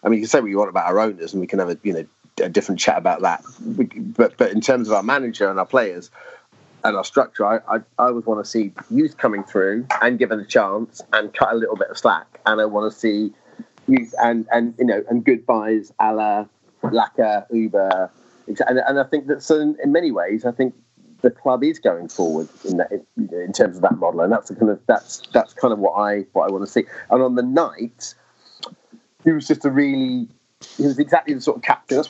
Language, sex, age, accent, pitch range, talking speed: English, male, 30-49, British, 105-135 Hz, 240 wpm